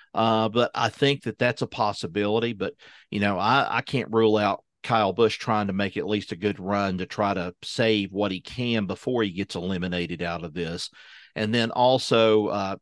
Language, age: English, 50-69